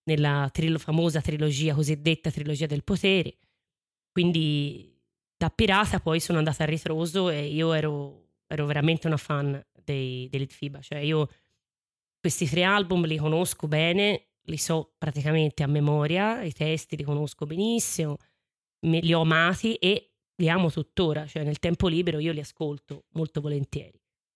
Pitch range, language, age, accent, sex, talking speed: 150-170 Hz, Italian, 20-39, native, female, 150 wpm